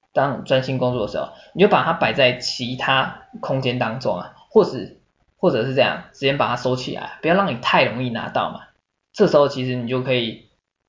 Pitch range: 125-150 Hz